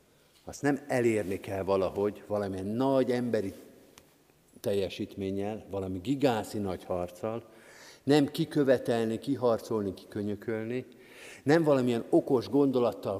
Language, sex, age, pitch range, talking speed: Hungarian, male, 50-69, 105-135 Hz, 95 wpm